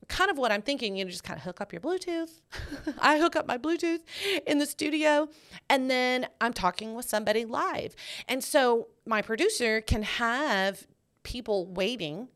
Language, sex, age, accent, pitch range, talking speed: English, female, 30-49, American, 185-280 Hz, 180 wpm